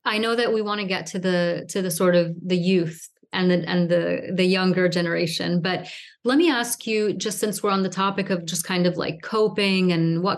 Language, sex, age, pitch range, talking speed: English, female, 30-49, 180-215 Hz, 235 wpm